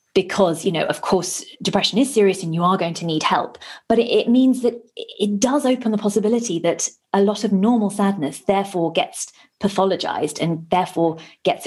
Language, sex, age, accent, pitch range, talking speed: English, female, 20-39, British, 170-215 Hz, 185 wpm